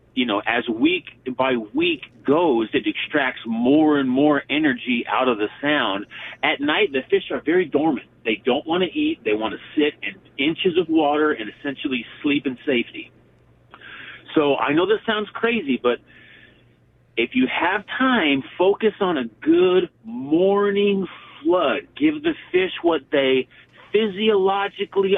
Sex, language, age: male, English, 40-59